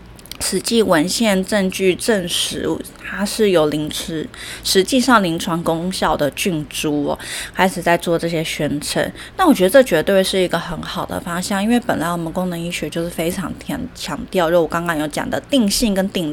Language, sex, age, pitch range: Chinese, female, 20-39, 170-210 Hz